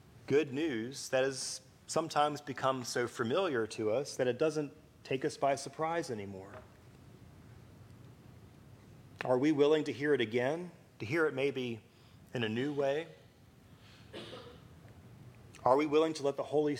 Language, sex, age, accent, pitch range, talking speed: English, male, 30-49, American, 120-145 Hz, 145 wpm